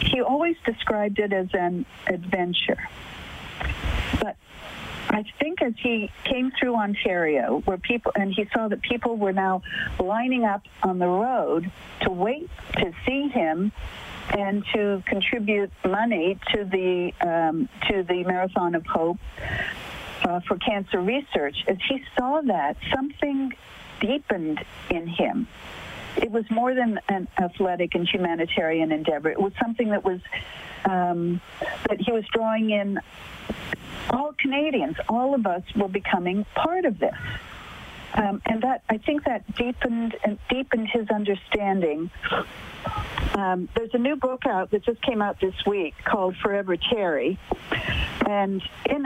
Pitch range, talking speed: 185-240 Hz, 140 wpm